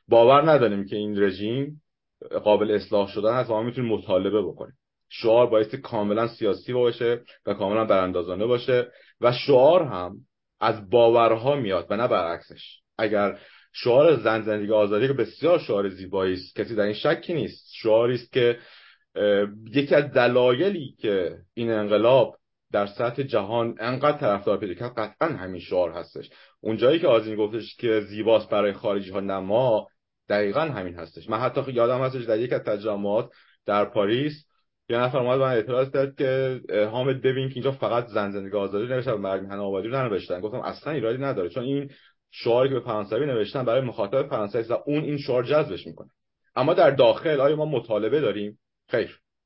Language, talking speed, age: Persian, 165 wpm, 30-49